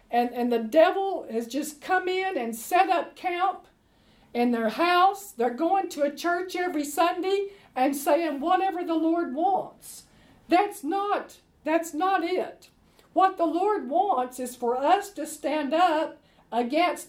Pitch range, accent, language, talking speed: 250-370 Hz, American, English, 155 wpm